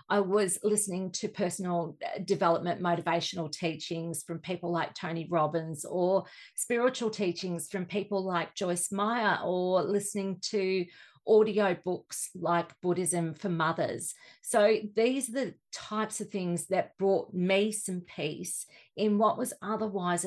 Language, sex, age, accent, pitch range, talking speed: English, female, 40-59, Australian, 165-200 Hz, 135 wpm